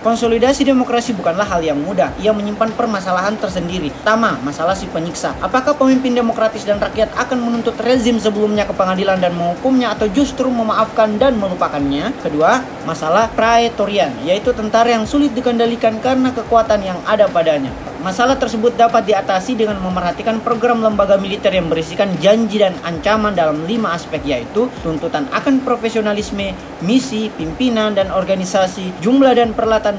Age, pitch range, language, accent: 20-39, 190-235 Hz, Indonesian, native